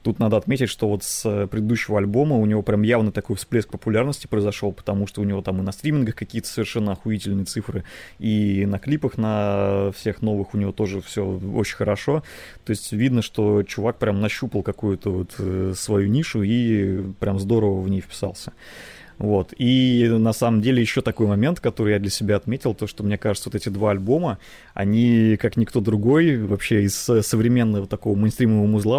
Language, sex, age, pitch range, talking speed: Russian, male, 20-39, 100-115 Hz, 180 wpm